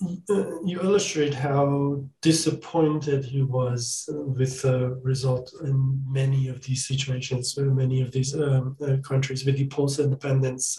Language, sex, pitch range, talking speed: English, male, 135-160 Hz, 140 wpm